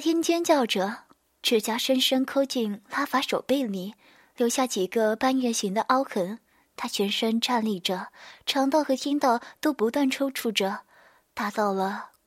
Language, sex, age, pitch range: Chinese, female, 20-39, 215-270 Hz